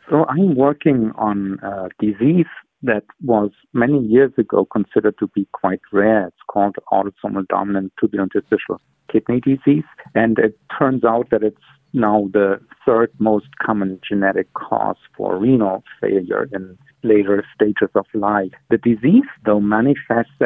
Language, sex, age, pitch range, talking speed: English, male, 50-69, 100-125 Hz, 145 wpm